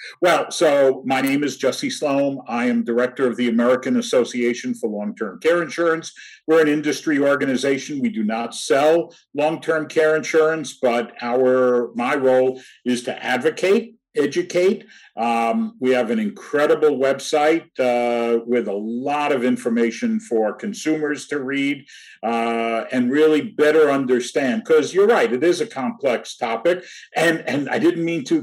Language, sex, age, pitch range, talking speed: English, male, 50-69, 130-190 Hz, 150 wpm